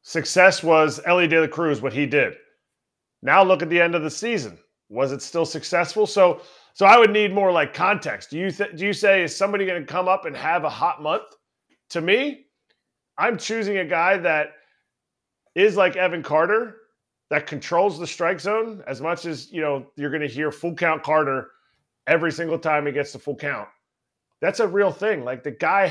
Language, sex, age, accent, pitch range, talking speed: English, male, 30-49, American, 145-190 Hz, 205 wpm